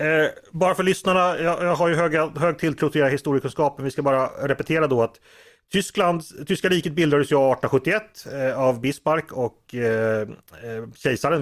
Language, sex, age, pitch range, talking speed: Swedish, male, 30-49, 120-175 Hz, 165 wpm